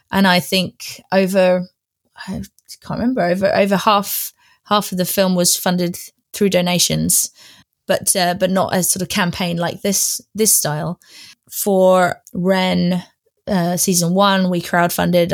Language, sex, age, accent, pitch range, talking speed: English, female, 20-39, British, 180-200 Hz, 145 wpm